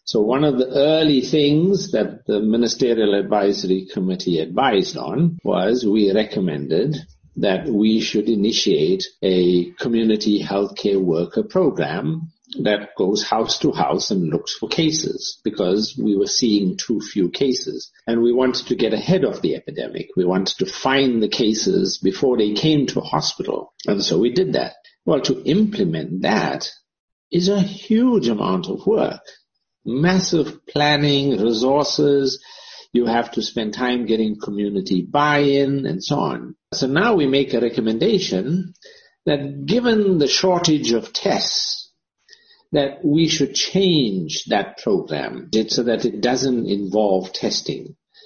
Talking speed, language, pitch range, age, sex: 145 wpm, English, 110-155 Hz, 60-79, male